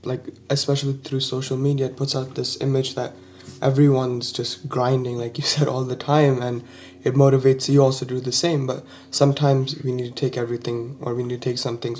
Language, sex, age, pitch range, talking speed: English, male, 20-39, 120-140 Hz, 215 wpm